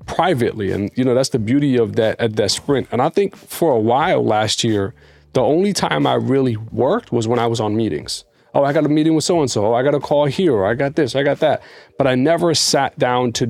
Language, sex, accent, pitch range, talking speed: English, male, American, 115-140 Hz, 250 wpm